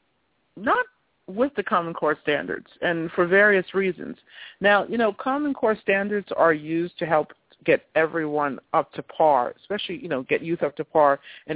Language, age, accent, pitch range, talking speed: English, 50-69, American, 150-185 Hz, 175 wpm